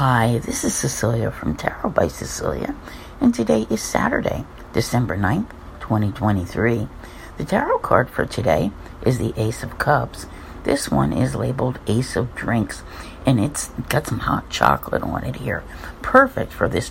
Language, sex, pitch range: English, female, 95-135 Hz